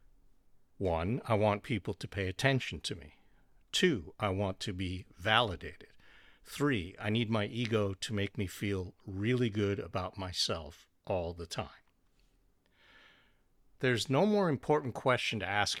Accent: American